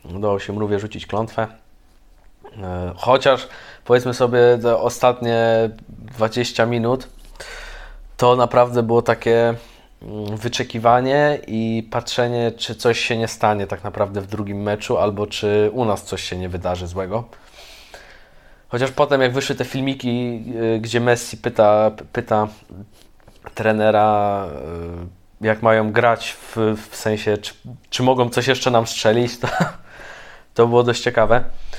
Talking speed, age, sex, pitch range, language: 125 wpm, 20-39, male, 105-125 Hz, Polish